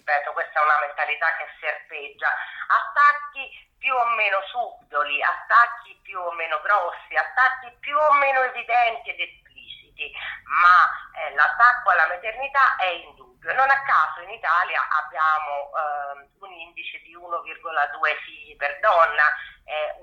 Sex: female